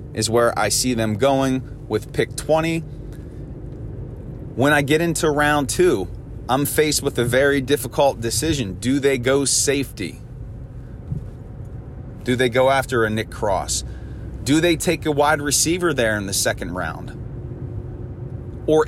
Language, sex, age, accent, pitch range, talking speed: English, male, 30-49, American, 115-140 Hz, 145 wpm